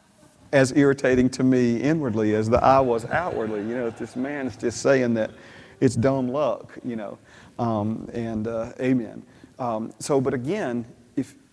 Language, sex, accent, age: English, male, American, 40-59